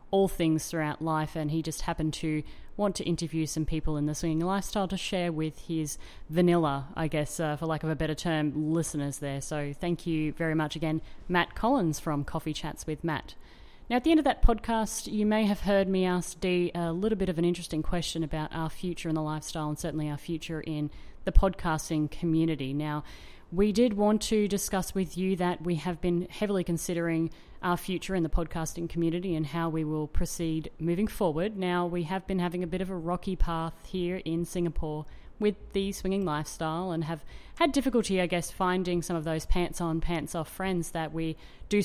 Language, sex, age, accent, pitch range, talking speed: English, female, 30-49, Australian, 160-180 Hz, 210 wpm